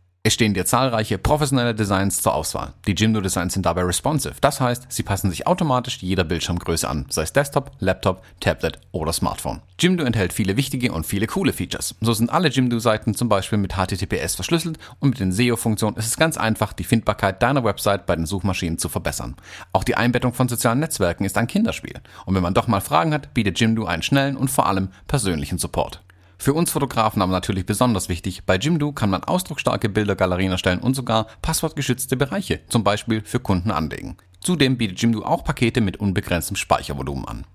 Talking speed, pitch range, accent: 190 wpm, 95-125 Hz, German